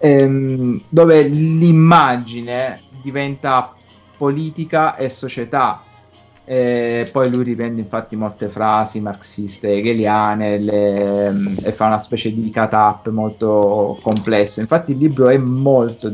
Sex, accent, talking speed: male, native, 115 wpm